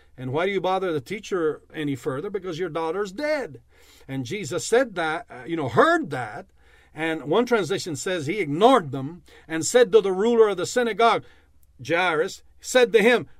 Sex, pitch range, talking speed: male, 175-265 Hz, 180 wpm